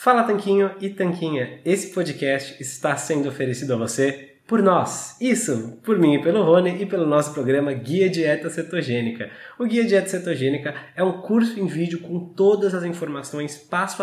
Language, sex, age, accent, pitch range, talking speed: Portuguese, male, 20-39, Brazilian, 125-170 Hz, 170 wpm